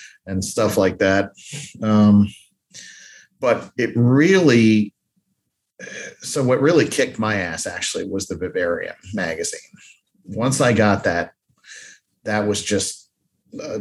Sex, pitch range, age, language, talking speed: male, 95-115 Hz, 40-59, English, 115 wpm